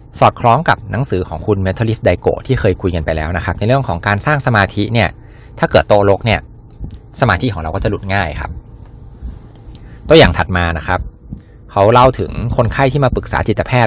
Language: Thai